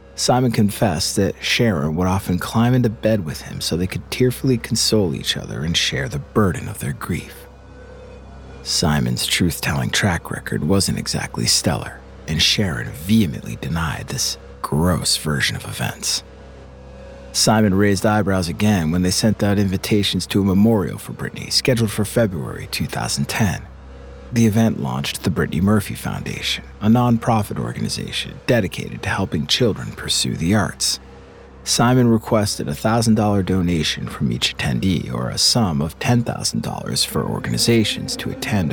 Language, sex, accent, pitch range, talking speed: English, male, American, 70-110 Hz, 145 wpm